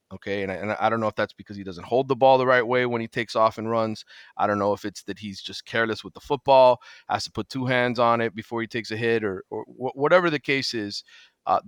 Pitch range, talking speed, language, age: 105-125 Hz, 285 wpm, English, 30-49